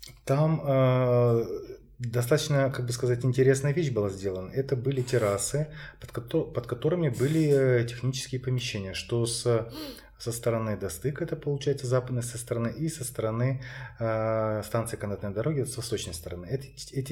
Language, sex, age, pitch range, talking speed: Russian, male, 30-49, 110-140 Hz, 145 wpm